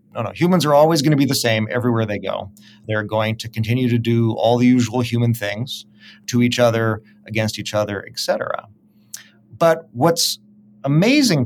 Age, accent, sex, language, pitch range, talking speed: 30-49, American, male, English, 105-130 Hz, 180 wpm